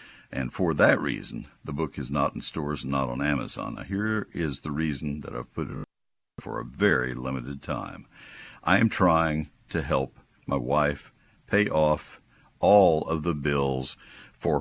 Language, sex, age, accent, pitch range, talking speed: English, male, 60-79, American, 70-90 Hz, 175 wpm